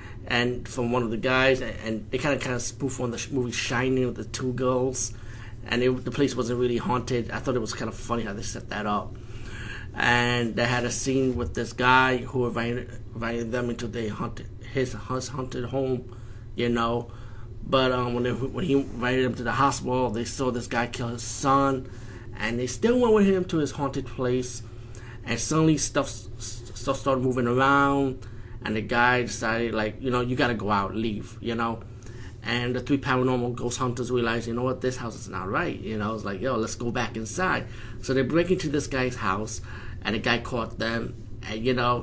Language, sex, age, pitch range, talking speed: English, male, 30-49, 115-130 Hz, 215 wpm